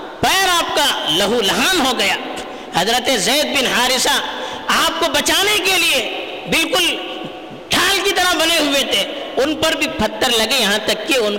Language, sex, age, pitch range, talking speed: Urdu, female, 50-69, 265-345 Hz, 170 wpm